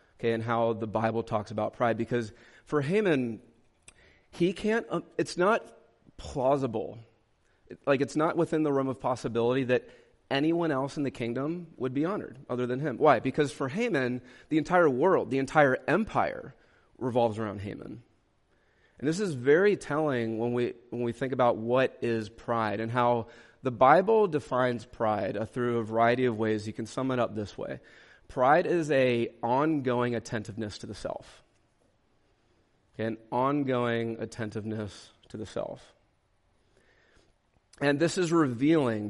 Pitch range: 115-145 Hz